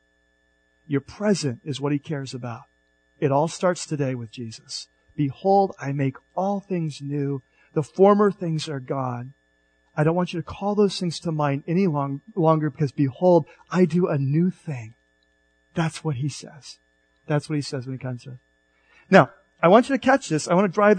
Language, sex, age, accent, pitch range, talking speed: English, male, 40-59, American, 110-180 Hz, 190 wpm